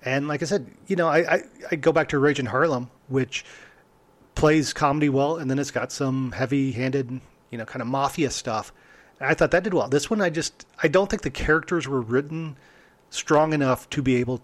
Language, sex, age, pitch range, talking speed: English, male, 40-59, 125-160 Hz, 220 wpm